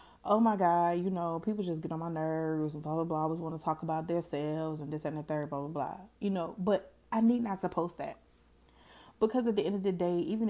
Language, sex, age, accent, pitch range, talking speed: English, female, 20-39, American, 155-200 Hz, 275 wpm